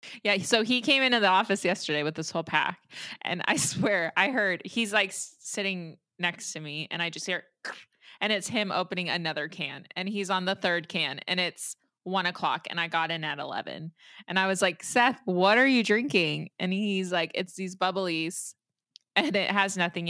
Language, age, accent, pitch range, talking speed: English, 20-39, American, 170-230 Hz, 205 wpm